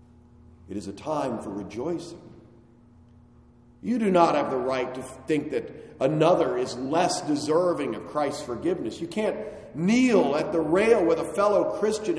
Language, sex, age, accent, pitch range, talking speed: English, male, 50-69, American, 120-180 Hz, 160 wpm